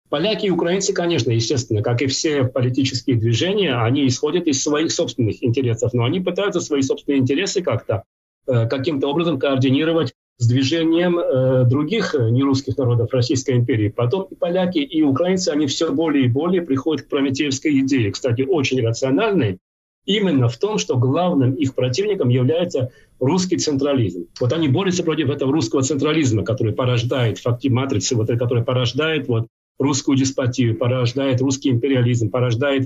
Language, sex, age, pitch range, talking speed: Russian, male, 40-59, 120-155 Hz, 150 wpm